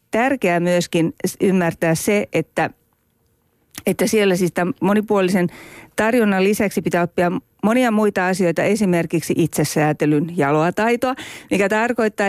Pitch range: 165-215 Hz